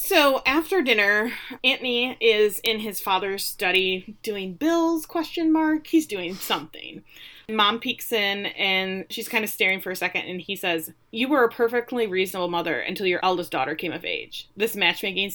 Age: 30-49